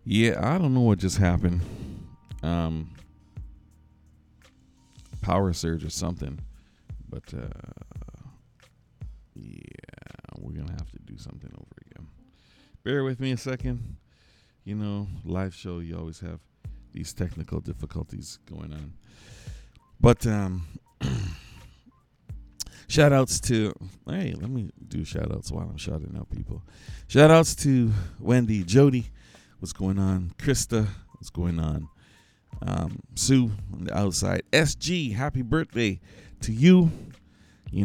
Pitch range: 85-120 Hz